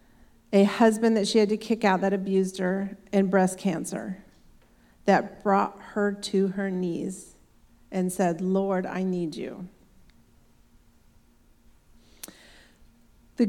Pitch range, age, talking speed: 200-255 Hz, 40-59, 120 wpm